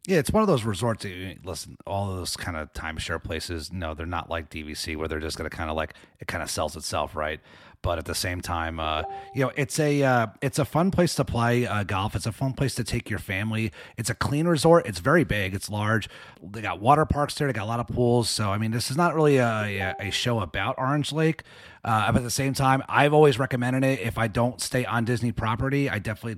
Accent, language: American, English